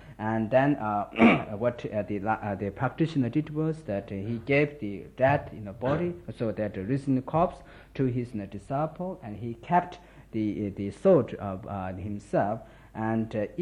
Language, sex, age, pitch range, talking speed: Italian, male, 60-79, 100-135 Hz, 205 wpm